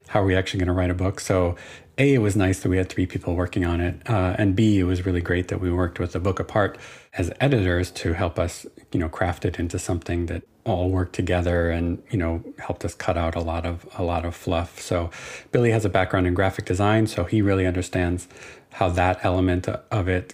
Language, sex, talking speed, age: English, male, 240 wpm, 40-59